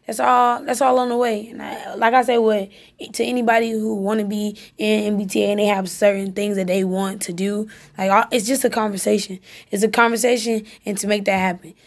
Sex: female